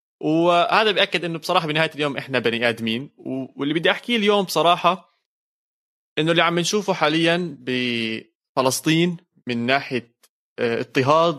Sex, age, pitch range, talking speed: male, 20-39, 125-155 Hz, 120 wpm